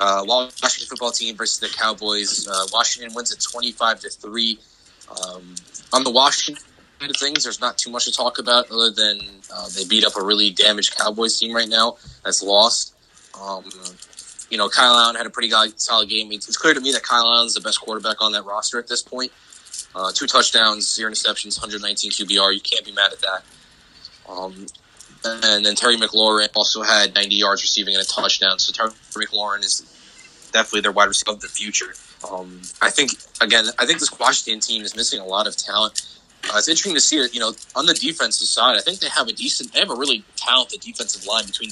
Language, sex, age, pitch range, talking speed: English, male, 20-39, 100-115 Hz, 215 wpm